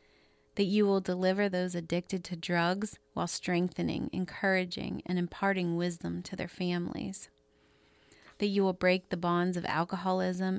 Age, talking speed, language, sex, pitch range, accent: 30-49, 140 wpm, English, female, 175-200 Hz, American